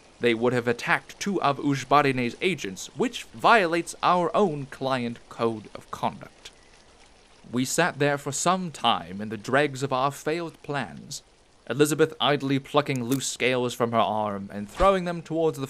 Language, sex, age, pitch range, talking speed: English, male, 30-49, 120-175 Hz, 160 wpm